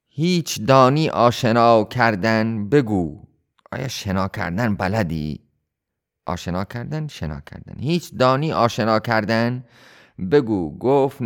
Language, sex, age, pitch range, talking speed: Persian, male, 30-49, 95-125 Hz, 100 wpm